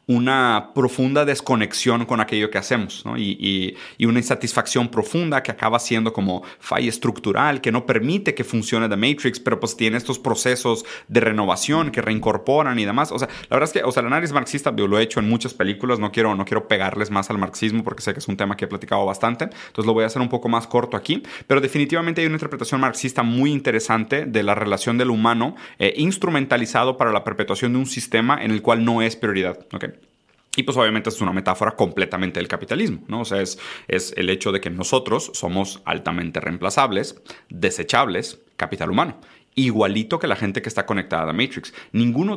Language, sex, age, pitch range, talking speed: Spanish, male, 30-49, 105-130 Hz, 210 wpm